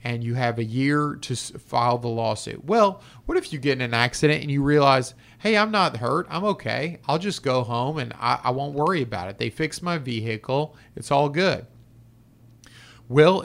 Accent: American